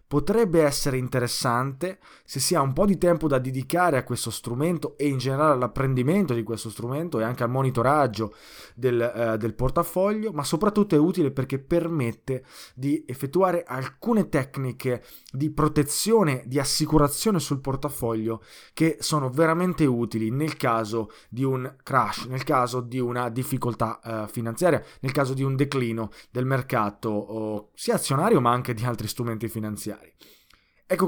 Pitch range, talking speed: 120-150 Hz, 150 wpm